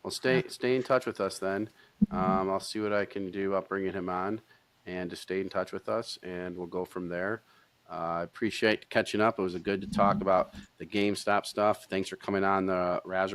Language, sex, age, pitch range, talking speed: English, male, 40-59, 85-105 Hz, 235 wpm